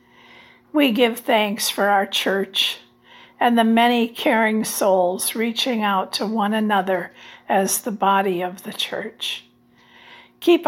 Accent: American